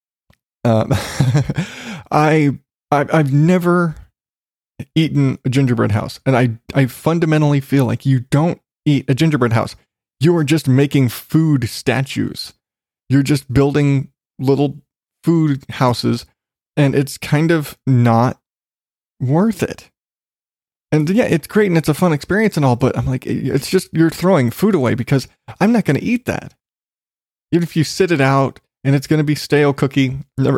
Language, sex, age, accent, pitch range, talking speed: English, male, 20-39, American, 125-155 Hz, 160 wpm